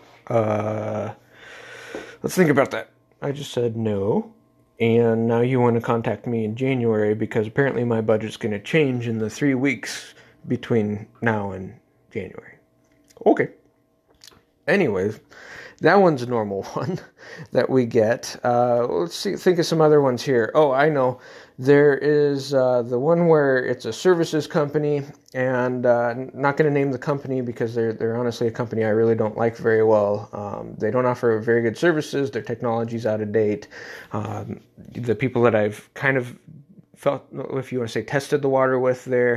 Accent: American